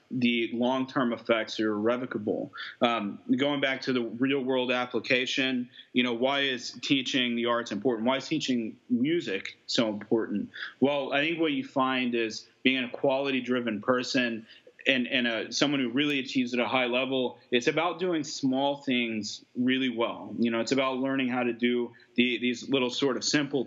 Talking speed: 175 wpm